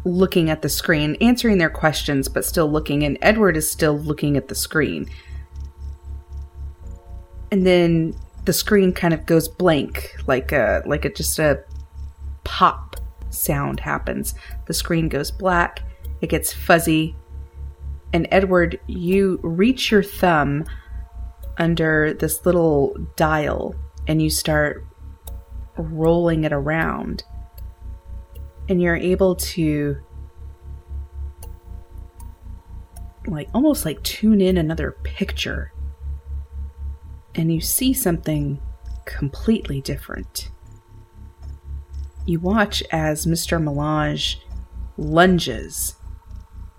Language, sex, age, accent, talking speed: English, female, 30-49, American, 105 wpm